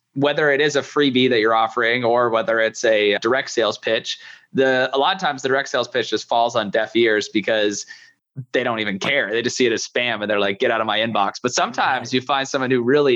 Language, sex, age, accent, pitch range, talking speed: English, male, 20-39, American, 115-145 Hz, 250 wpm